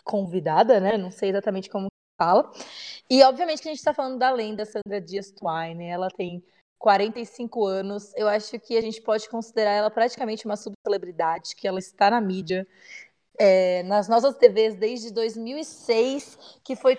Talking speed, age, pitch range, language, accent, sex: 165 wpm, 20-39, 200-245 Hz, Portuguese, Brazilian, female